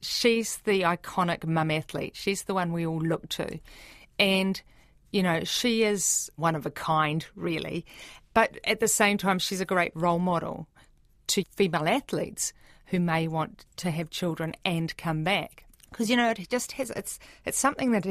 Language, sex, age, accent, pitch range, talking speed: English, female, 40-59, Australian, 160-200 Hz, 180 wpm